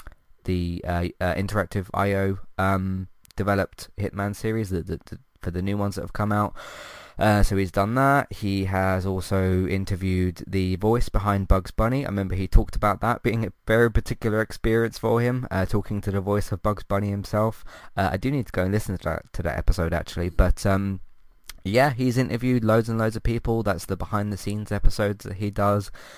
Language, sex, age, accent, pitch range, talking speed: English, male, 20-39, British, 95-105 Hz, 195 wpm